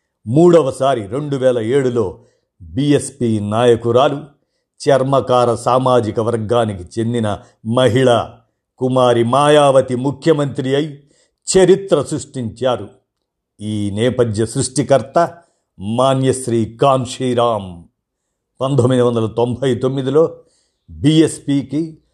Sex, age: male, 50-69